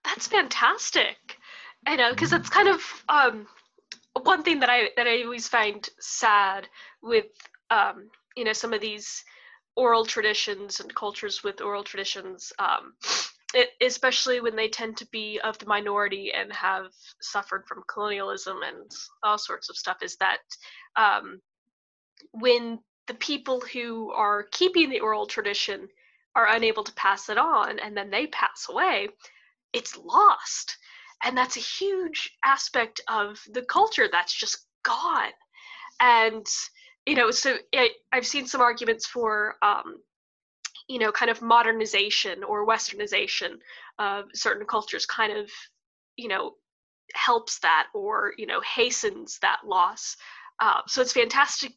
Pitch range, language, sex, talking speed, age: 215-345 Hz, English, female, 145 wpm, 10-29